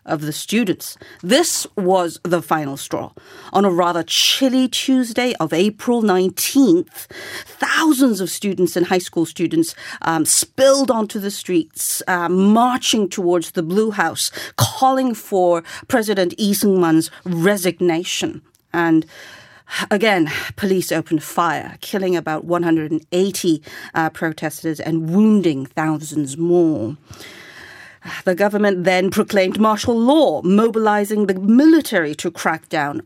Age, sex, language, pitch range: 40-59, female, Korean, 165-225 Hz